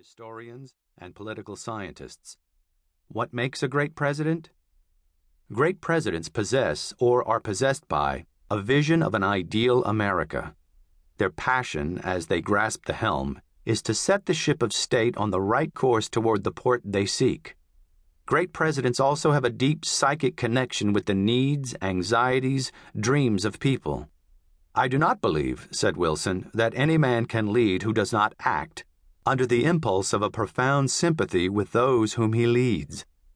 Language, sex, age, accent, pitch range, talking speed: English, male, 40-59, American, 90-130 Hz, 155 wpm